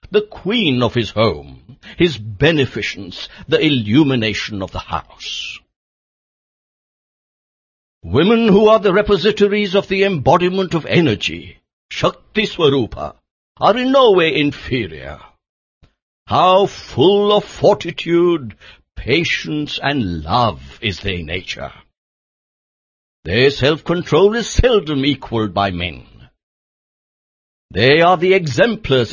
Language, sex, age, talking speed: English, male, 60-79, 100 wpm